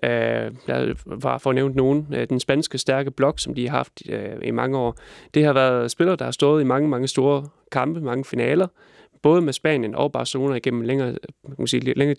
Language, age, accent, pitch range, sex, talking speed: Danish, 30-49, native, 130-150 Hz, male, 185 wpm